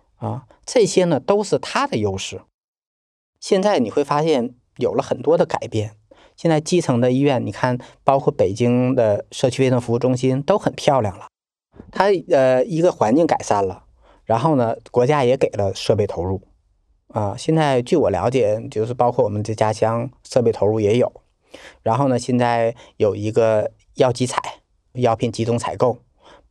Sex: male